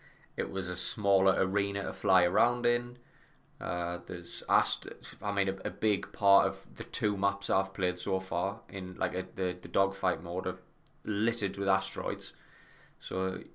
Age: 20-39